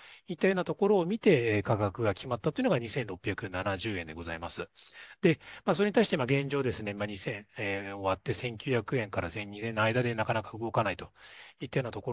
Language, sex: Japanese, male